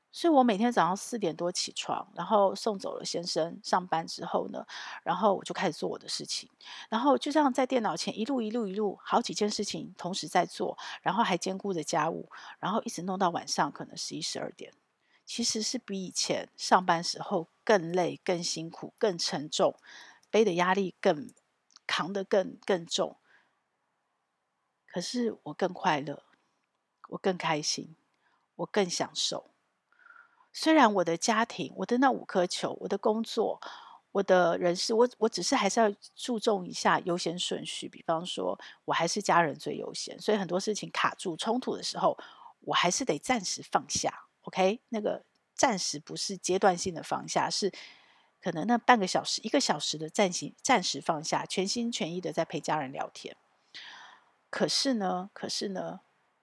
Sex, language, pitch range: female, Chinese, 175-230 Hz